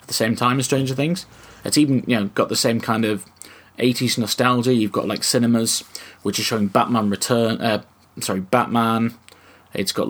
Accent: British